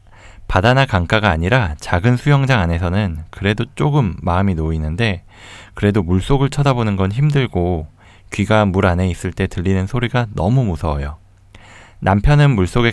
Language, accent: Korean, native